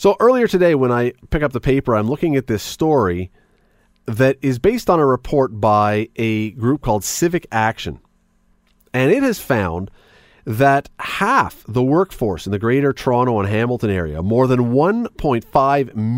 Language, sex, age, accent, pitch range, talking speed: English, male, 40-59, American, 105-140 Hz, 165 wpm